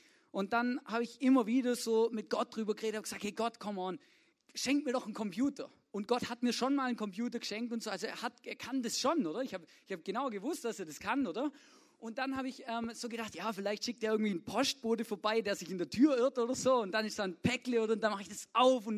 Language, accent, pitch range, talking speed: German, German, 185-255 Hz, 280 wpm